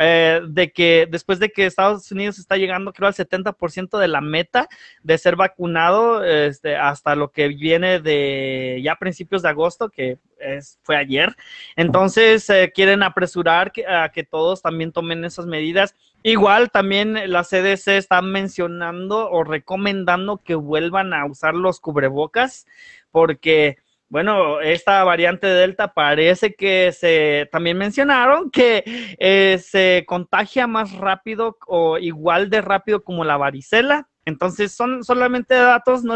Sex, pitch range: male, 165-215 Hz